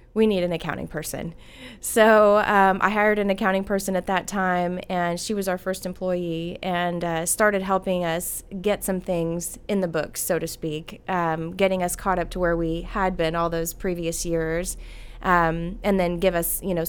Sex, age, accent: female, 20-39, American